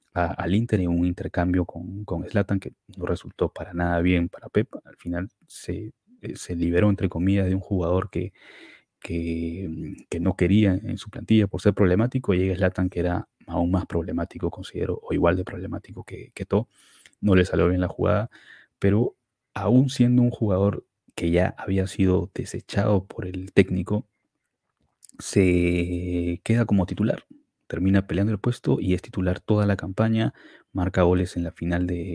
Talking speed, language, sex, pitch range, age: 170 wpm, Spanish, male, 90-110 Hz, 20-39